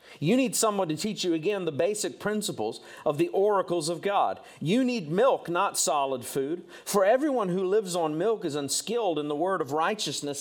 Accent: American